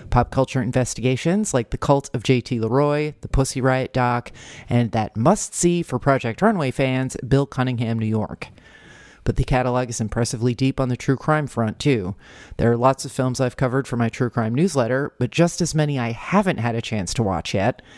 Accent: American